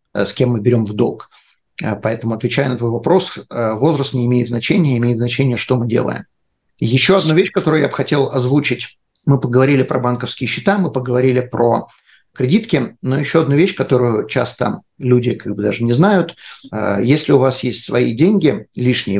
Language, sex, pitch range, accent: Russian, male, 125-150 Hz, native